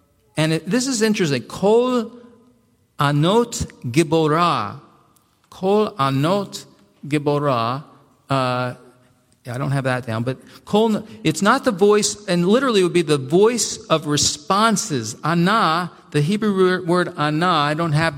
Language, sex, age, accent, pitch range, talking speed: English, male, 50-69, American, 145-205 Hz, 130 wpm